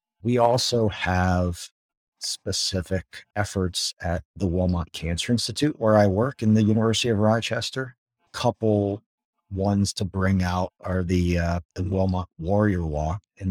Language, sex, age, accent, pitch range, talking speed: English, male, 50-69, American, 80-105 Hz, 140 wpm